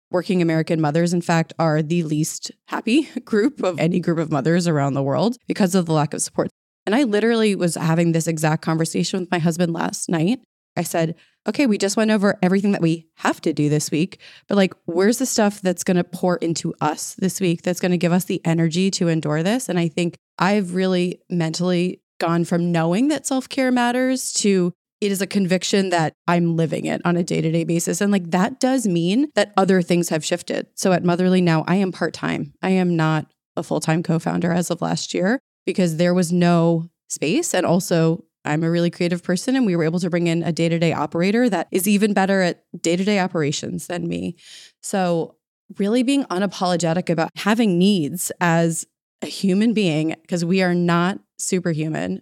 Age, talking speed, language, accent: 20-39, 200 wpm, English, American